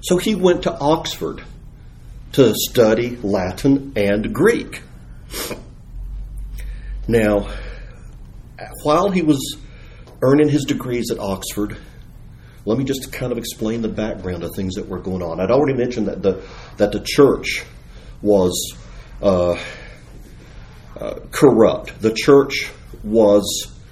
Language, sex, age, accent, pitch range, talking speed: English, male, 50-69, American, 100-125 Hz, 120 wpm